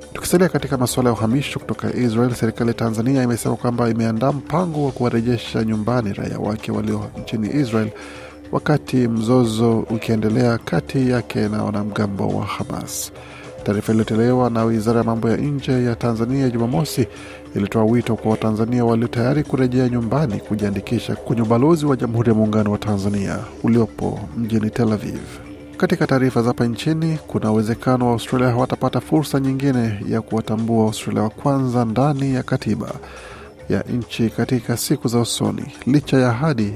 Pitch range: 110-130 Hz